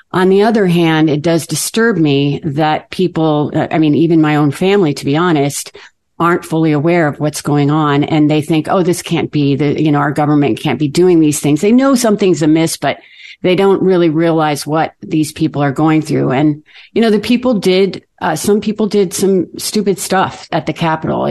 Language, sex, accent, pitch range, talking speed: English, female, American, 150-185 Hz, 210 wpm